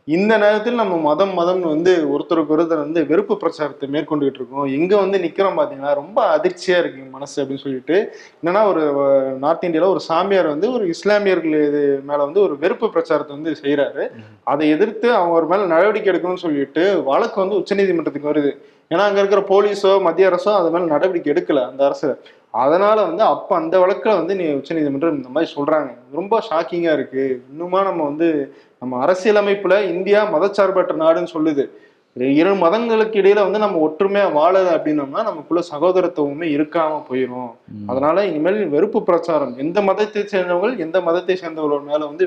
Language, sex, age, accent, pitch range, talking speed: Tamil, male, 20-39, native, 145-200 Hz, 155 wpm